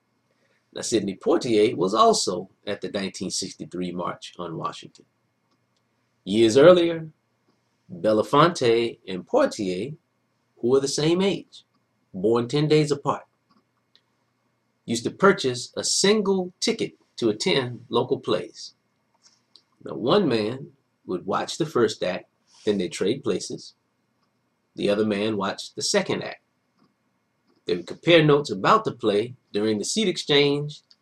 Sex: male